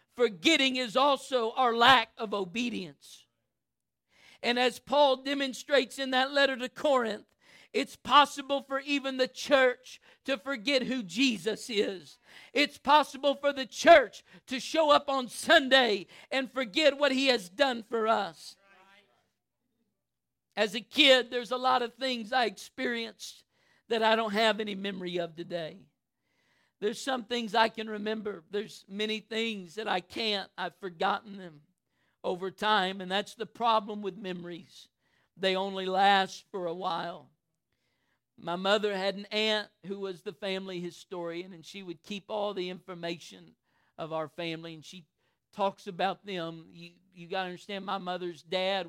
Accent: American